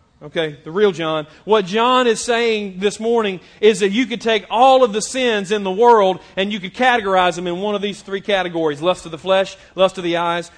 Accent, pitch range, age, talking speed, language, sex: American, 180-220 Hz, 40-59, 235 wpm, English, male